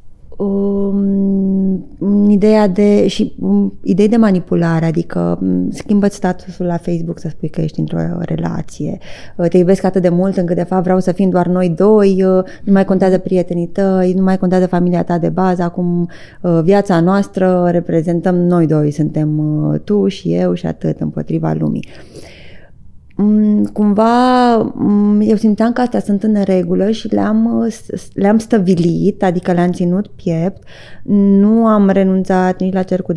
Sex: female